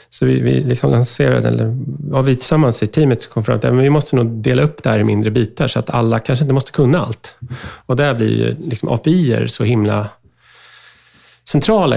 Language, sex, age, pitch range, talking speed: Swedish, male, 30-49, 110-135 Hz, 195 wpm